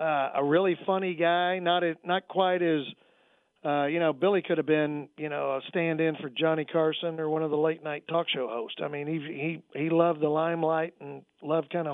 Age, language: 50-69, English